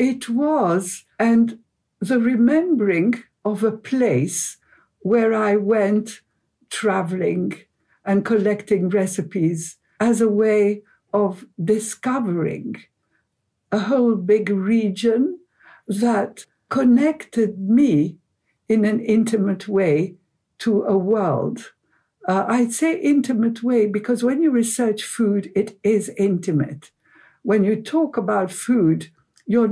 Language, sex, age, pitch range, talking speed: English, female, 60-79, 195-235 Hz, 105 wpm